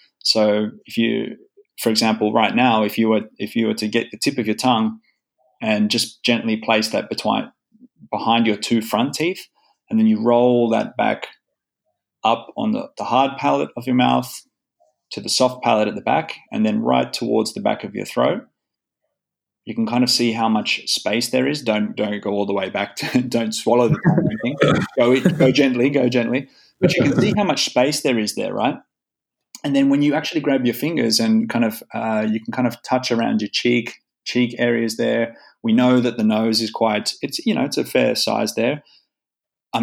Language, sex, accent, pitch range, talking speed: English, male, Australian, 110-125 Hz, 210 wpm